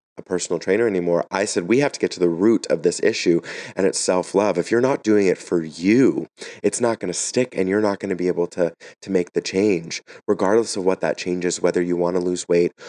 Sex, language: male, English